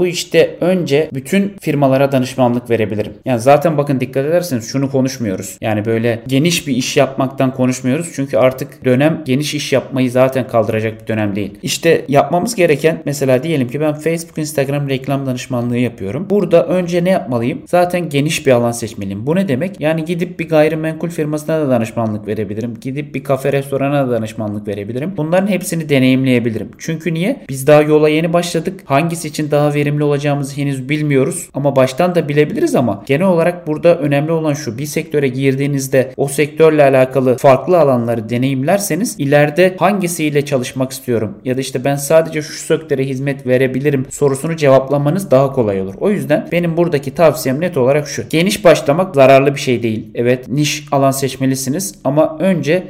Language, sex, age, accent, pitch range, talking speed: Turkish, male, 30-49, native, 130-155 Hz, 165 wpm